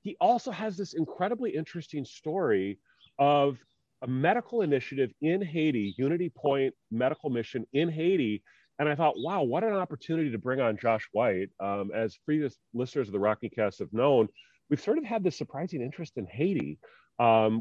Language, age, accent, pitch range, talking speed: English, 40-59, American, 110-150 Hz, 175 wpm